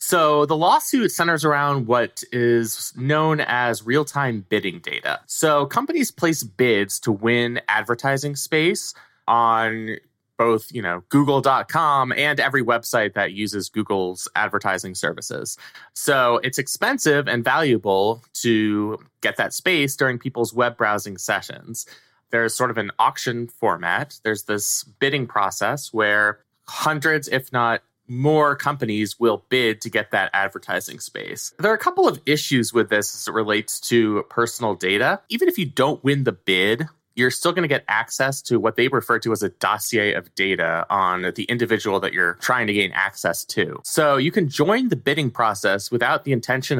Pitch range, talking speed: 110-145 Hz, 165 wpm